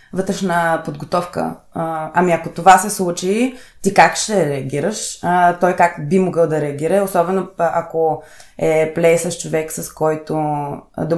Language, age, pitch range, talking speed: Bulgarian, 20-39, 160-185 Hz, 140 wpm